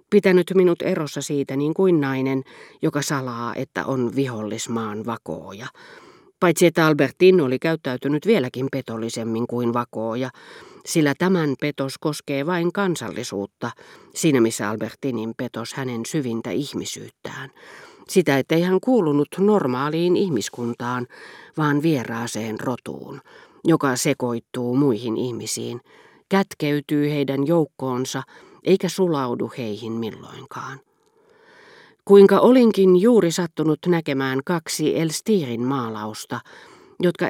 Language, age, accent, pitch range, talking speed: Finnish, 40-59, native, 120-175 Hz, 105 wpm